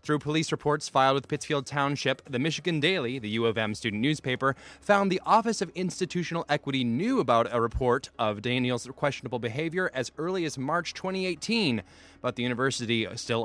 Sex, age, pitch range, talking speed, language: male, 20-39, 120-165 Hz, 175 wpm, English